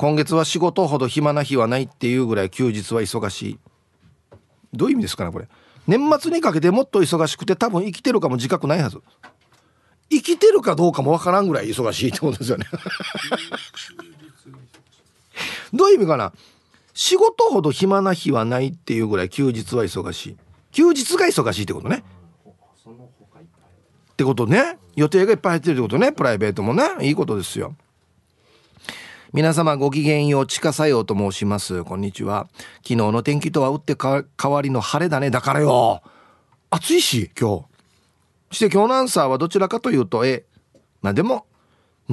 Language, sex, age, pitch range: Japanese, male, 40-59, 125-180 Hz